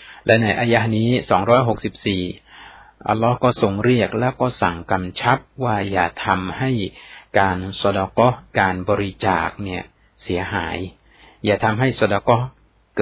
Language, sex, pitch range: Thai, male, 95-120 Hz